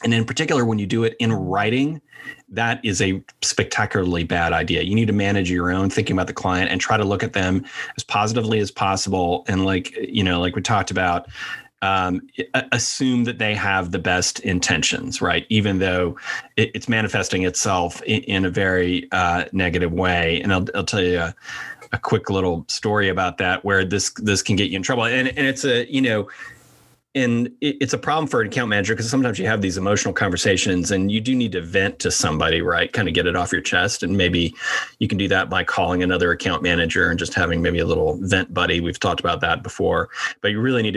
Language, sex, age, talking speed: English, male, 30-49, 215 wpm